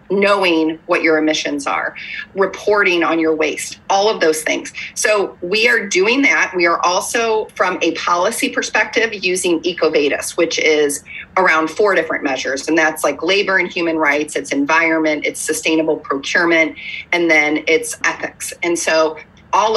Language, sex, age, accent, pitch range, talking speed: English, female, 30-49, American, 160-195 Hz, 160 wpm